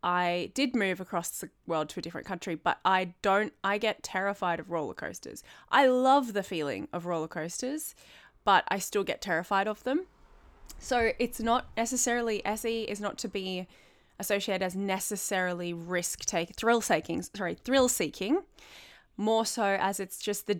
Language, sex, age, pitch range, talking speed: English, female, 20-39, 175-220 Hz, 170 wpm